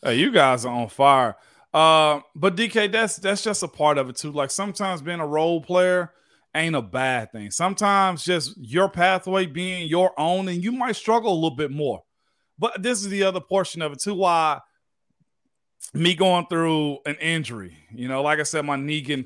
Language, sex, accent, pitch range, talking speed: English, male, American, 145-180 Hz, 205 wpm